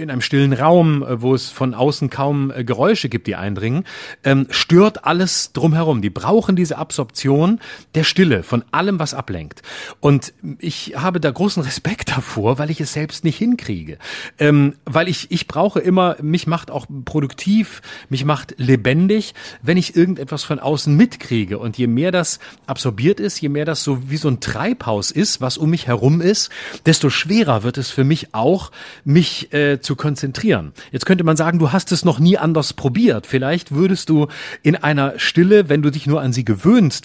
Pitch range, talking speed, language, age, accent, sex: 130-175 Hz, 190 wpm, German, 40-59, German, male